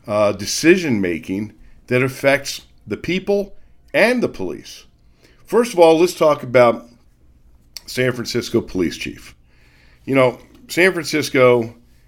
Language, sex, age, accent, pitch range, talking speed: English, male, 50-69, American, 100-130 Hz, 120 wpm